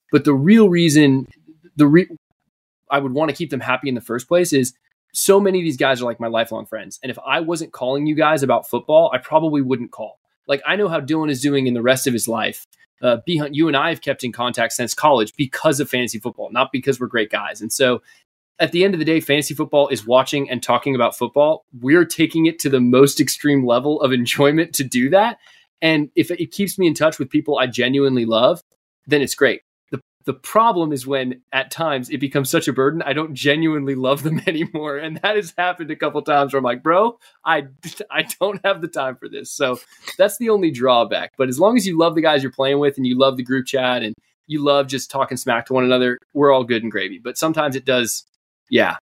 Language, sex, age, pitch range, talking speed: English, male, 20-39, 130-160 Hz, 240 wpm